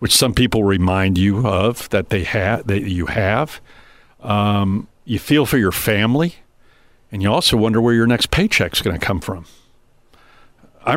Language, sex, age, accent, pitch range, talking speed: English, male, 50-69, American, 100-120 Hz, 165 wpm